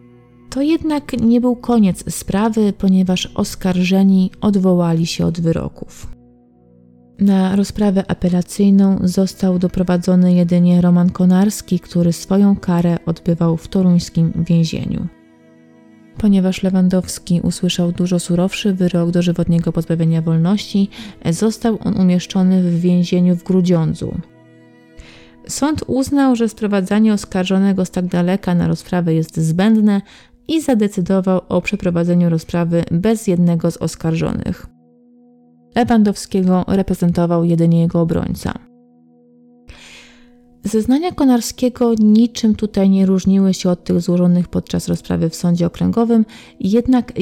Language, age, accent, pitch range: Polish, 30-49, native, 170-205 Hz